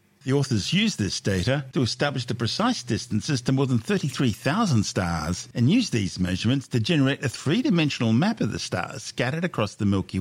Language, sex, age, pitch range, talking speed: English, male, 50-69, 100-140 Hz, 180 wpm